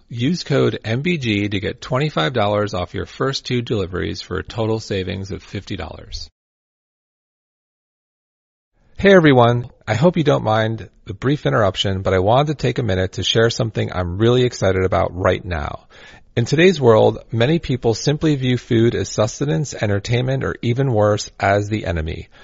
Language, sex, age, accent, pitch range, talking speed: English, male, 40-59, American, 100-130 Hz, 160 wpm